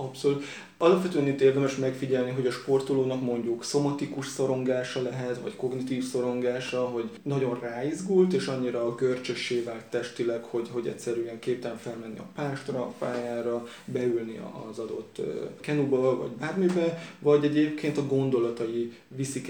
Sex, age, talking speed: male, 20-39, 140 wpm